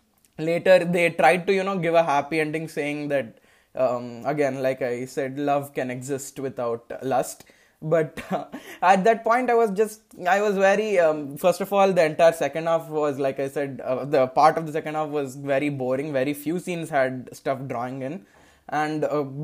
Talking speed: 200 wpm